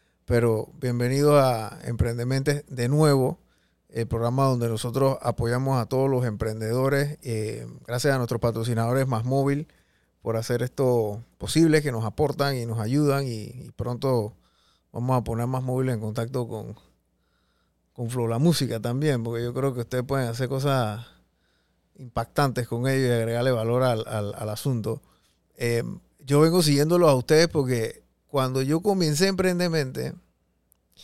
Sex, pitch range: male, 115-155 Hz